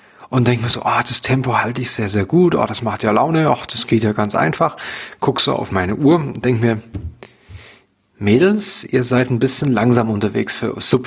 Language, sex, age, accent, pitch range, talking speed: German, male, 30-49, German, 120-150 Hz, 215 wpm